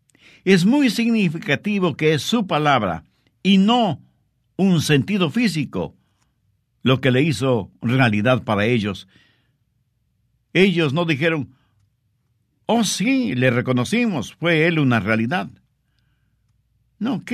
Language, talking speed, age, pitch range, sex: English, 105 wpm, 60-79, 120-175 Hz, male